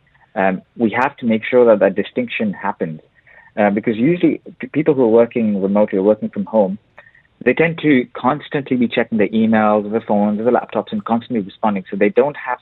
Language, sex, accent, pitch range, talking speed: English, male, Indian, 105-125 Hz, 200 wpm